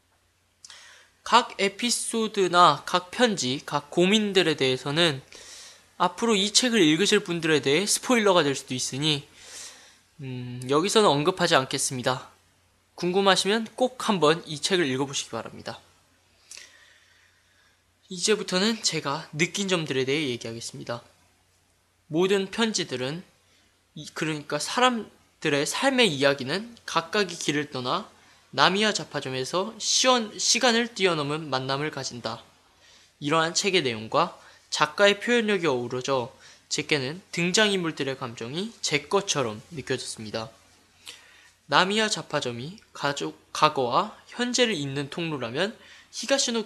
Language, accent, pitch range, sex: Korean, native, 125-200 Hz, male